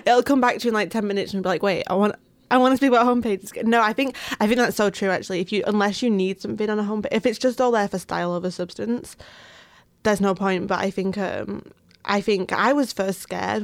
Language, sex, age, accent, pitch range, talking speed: English, female, 20-39, British, 185-225 Hz, 270 wpm